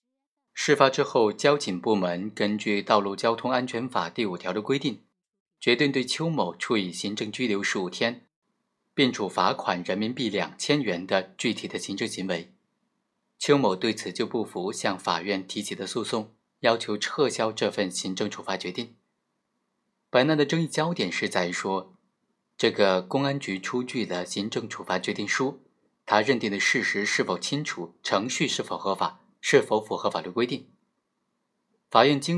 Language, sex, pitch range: Chinese, male, 105-145 Hz